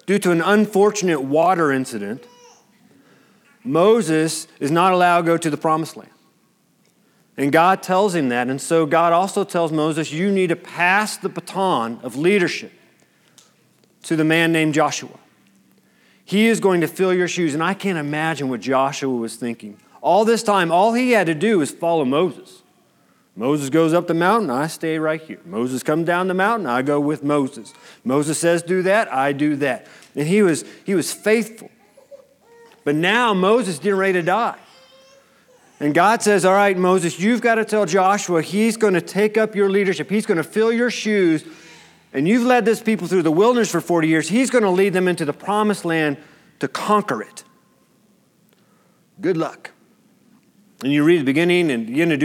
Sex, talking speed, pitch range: male, 185 wpm, 155-205 Hz